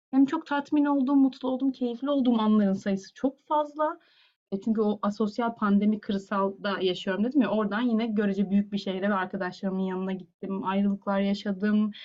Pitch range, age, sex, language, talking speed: 195-255 Hz, 30-49, female, Turkish, 165 wpm